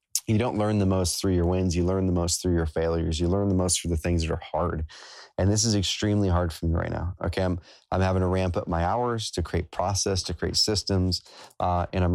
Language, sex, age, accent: English, male, 30-49, American